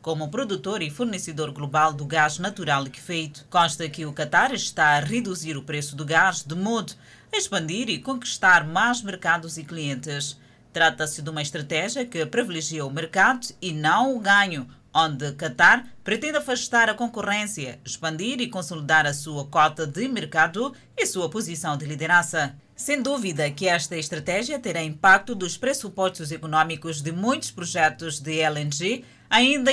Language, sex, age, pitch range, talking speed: Portuguese, female, 20-39, 155-210 Hz, 155 wpm